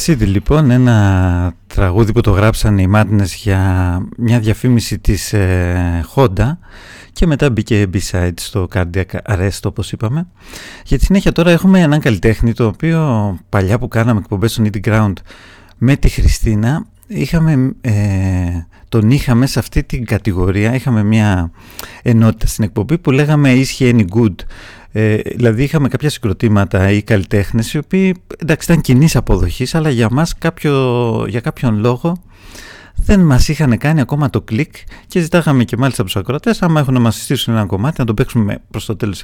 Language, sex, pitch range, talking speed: English, male, 100-135 Hz, 160 wpm